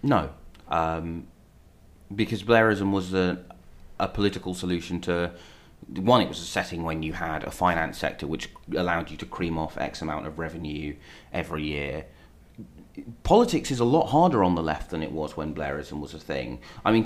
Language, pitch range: English, 80-105 Hz